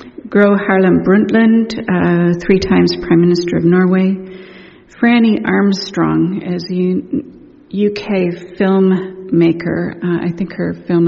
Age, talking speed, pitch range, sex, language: 50-69, 120 wpm, 170-195 Hz, female, English